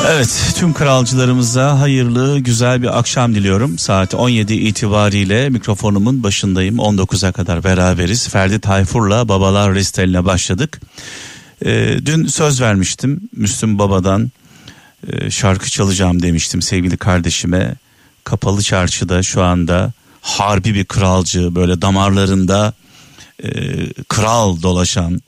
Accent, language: native, Turkish